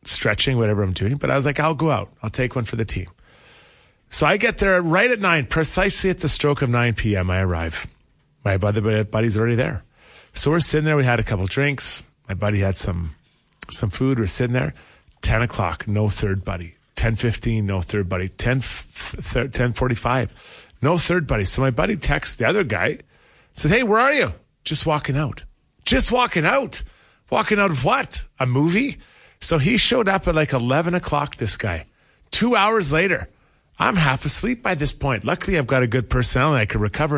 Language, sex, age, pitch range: English, male, 30-49, 115-180 Hz